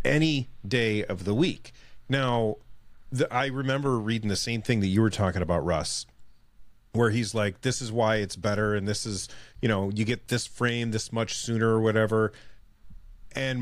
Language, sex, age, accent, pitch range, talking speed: English, male, 30-49, American, 110-135 Hz, 185 wpm